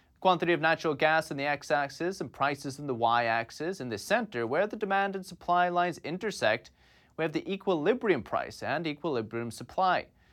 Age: 30-49